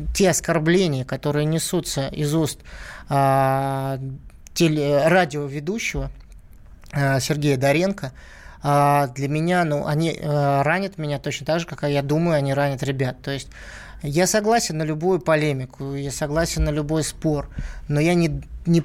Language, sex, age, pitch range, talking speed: Russian, male, 20-39, 140-170 Hz, 145 wpm